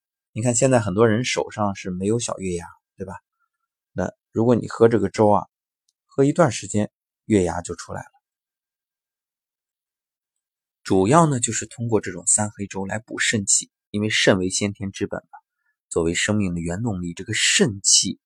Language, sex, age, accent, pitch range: Chinese, male, 20-39, native, 95-125 Hz